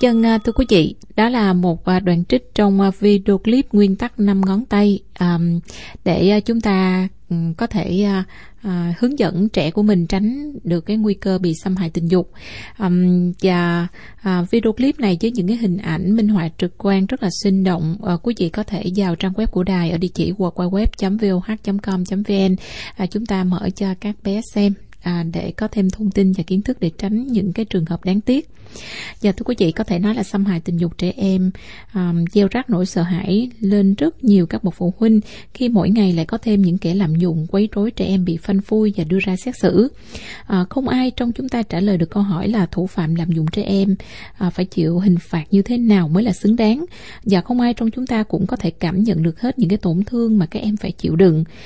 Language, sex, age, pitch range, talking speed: Vietnamese, female, 20-39, 180-215 Hz, 225 wpm